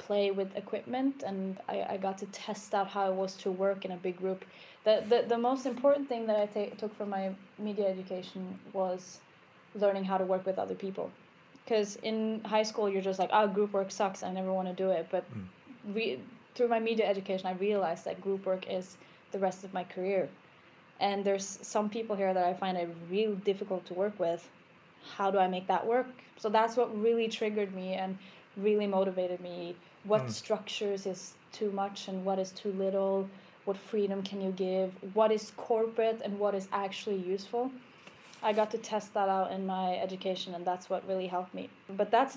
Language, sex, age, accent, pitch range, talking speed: English, female, 10-29, Norwegian, 190-215 Hz, 205 wpm